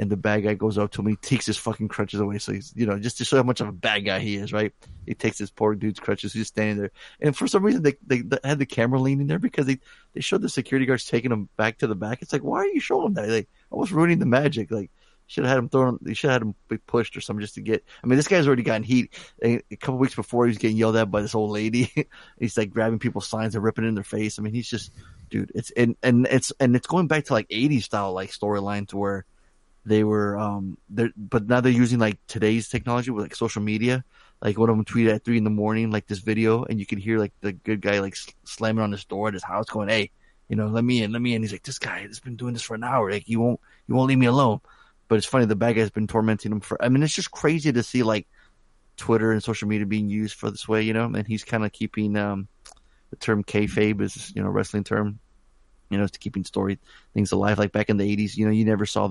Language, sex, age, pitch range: English, male, 20-39, 105-120 Hz